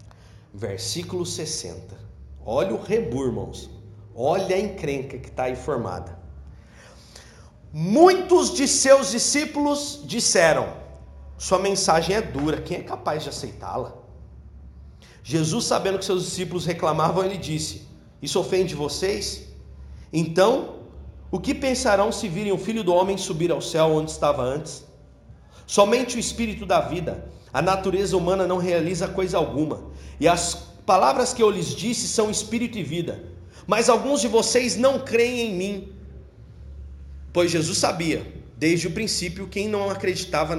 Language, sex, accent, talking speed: Portuguese, male, Brazilian, 140 wpm